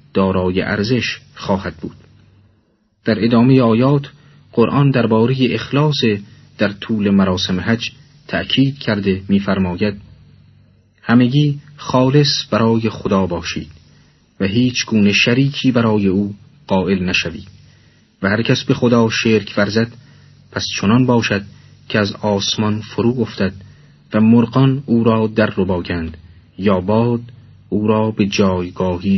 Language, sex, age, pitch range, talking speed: Persian, male, 40-59, 100-125 Hz, 115 wpm